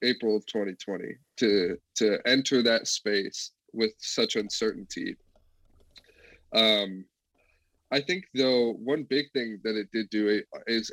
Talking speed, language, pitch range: 125 wpm, English, 105-125 Hz